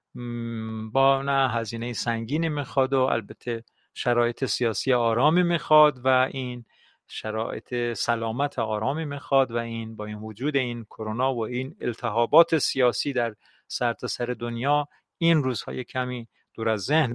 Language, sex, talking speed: Persian, male, 130 wpm